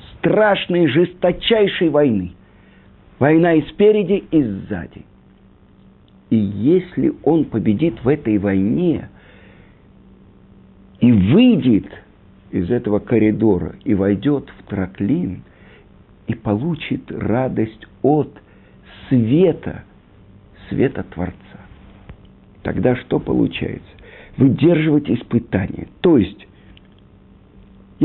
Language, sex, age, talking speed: Bulgarian, male, 50-69, 80 wpm